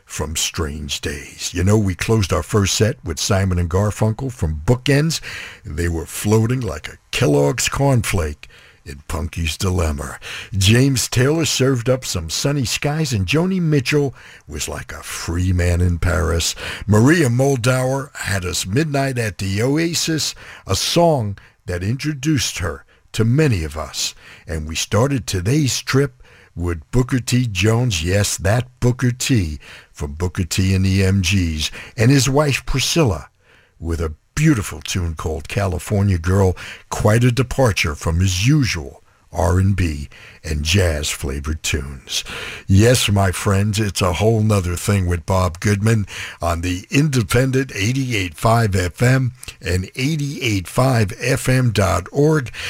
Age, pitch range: 60-79, 90-125 Hz